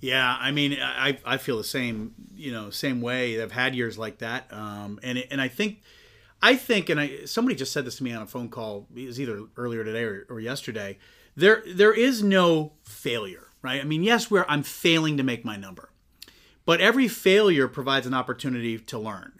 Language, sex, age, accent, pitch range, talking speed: English, male, 30-49, American, 125-180 Hz, 210 wpm